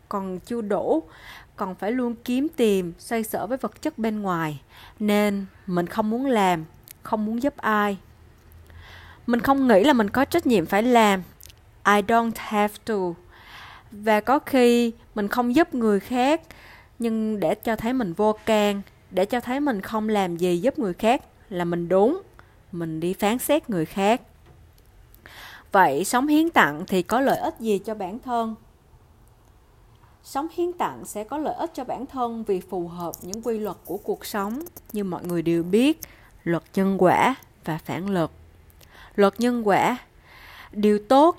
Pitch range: 180-235 Hz